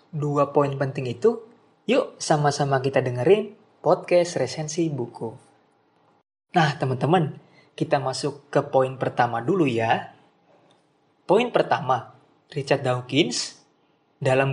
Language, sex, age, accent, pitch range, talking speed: Indonesian, male, 20-39, native, 135-175 Hz, 105 wpm